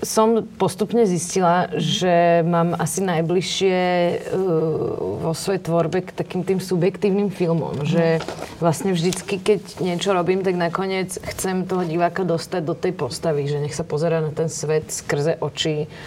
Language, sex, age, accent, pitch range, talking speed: Czech, female, 30-49, native, 150-175 Hz, 150 wpm